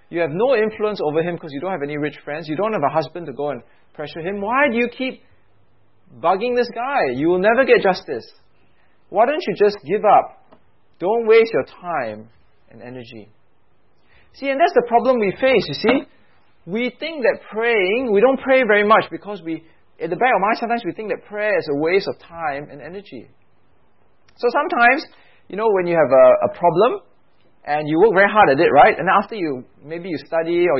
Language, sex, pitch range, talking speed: English, male, 150-235 Hz, 215 wpm